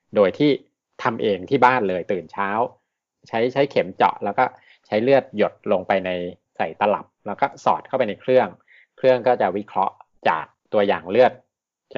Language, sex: Thai, male